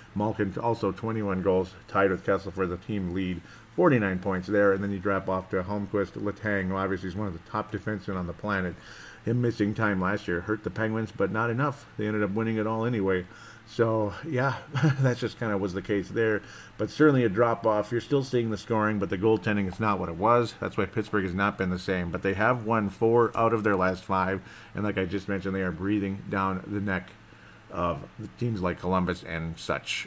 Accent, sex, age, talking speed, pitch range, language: American, male, 40-59, 225 wpm, 95-110 Hz, English